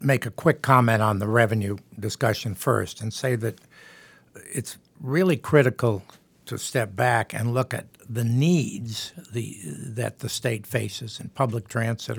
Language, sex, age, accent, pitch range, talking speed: English, male, 60-79, American, 115-130 Hz, 150 wpm